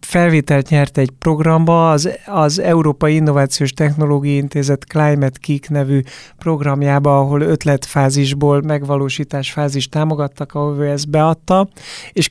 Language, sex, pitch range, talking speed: Hungarian, male, 140-160 Hz, 115 wpm